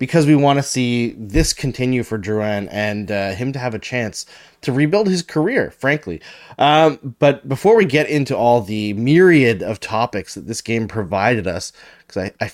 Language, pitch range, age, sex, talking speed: English, 110-165 Hz, 20-39, male, 190 wpm